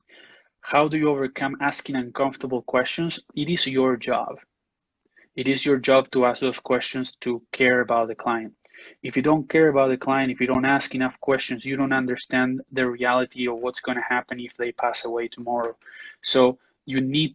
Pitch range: 125-135 Hz